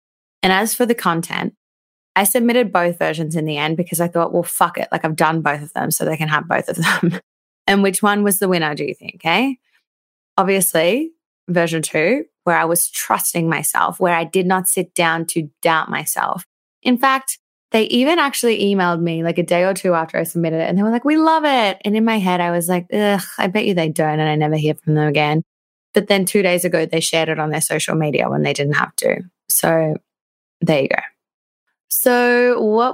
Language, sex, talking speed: English, female, 225 wpm